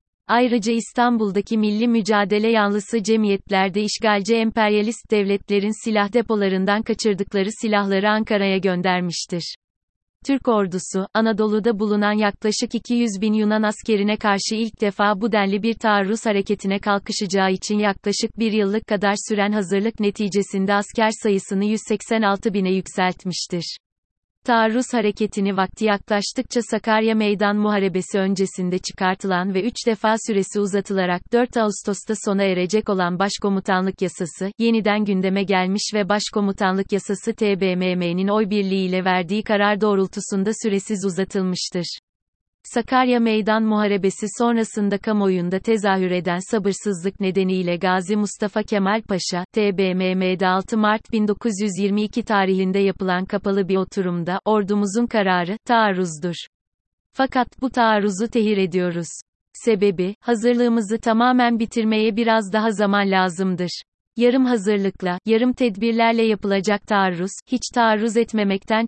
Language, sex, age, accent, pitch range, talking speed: Turkish, female, 30-49, native, 190-220 Hz, 110 wpm